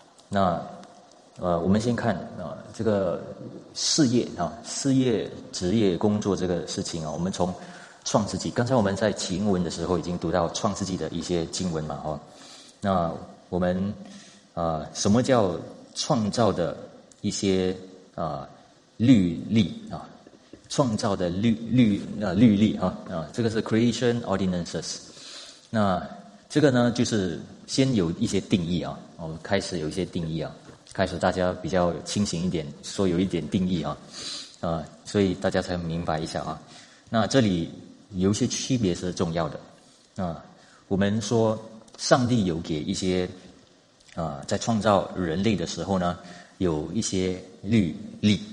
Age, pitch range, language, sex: 30-49, 90-110 Hz, Chinese, male